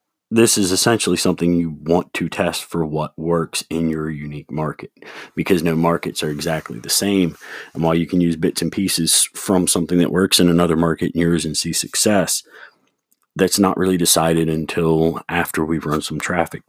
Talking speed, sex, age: 185 wpm, male, 30-49